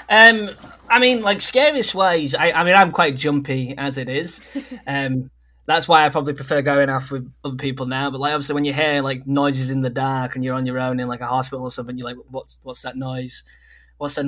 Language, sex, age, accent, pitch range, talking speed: English, male, 10-29, British, 130-160 Hz, 240 wpm